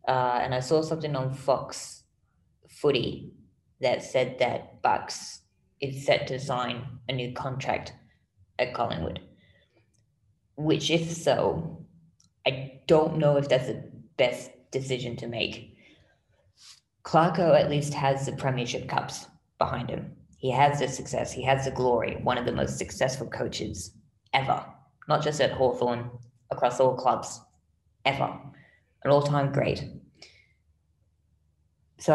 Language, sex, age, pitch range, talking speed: English, female, 20-39, 125-145 Hz, 130 wpm